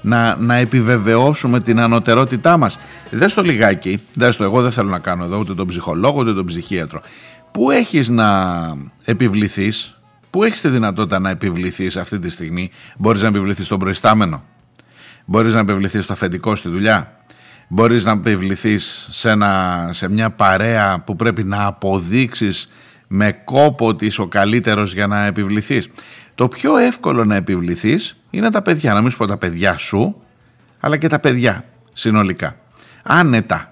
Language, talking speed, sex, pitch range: Greek, 155 wpm, male, 95-125 Hz